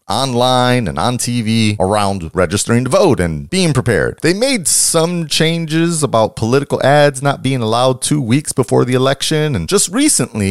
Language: English